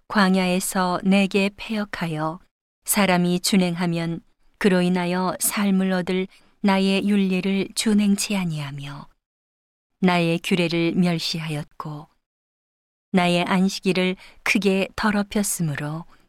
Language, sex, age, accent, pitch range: Korean, female, 40-59, native, 170-195 Hz